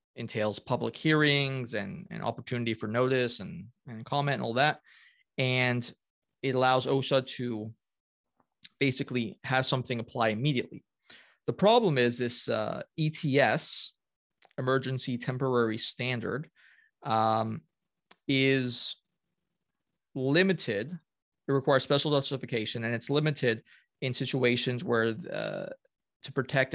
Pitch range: 115-135 Hz